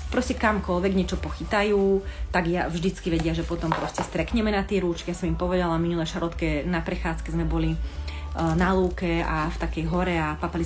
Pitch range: 160-185 Hz